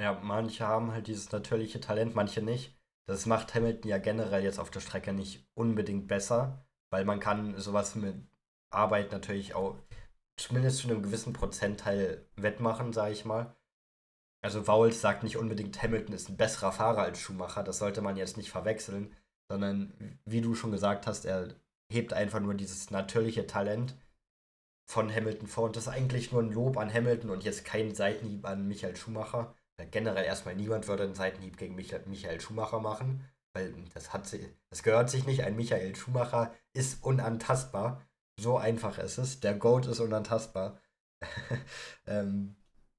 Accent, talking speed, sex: German, 170 wpm, male